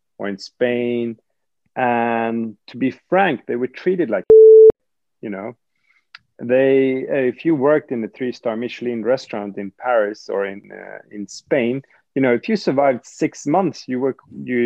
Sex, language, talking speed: male, English, 165 wpm